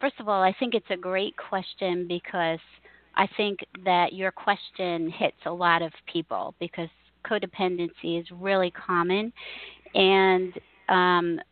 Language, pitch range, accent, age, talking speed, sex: English, 180-205 Hz, American, 40-59, 140 wpm, female